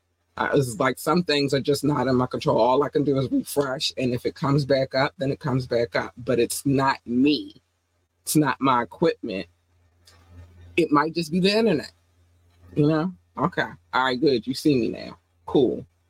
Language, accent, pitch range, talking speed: English, American, 105-150 Hz, 195 wpm